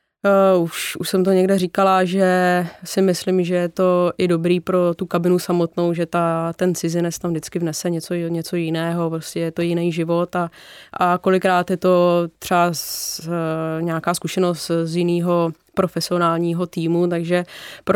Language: Czech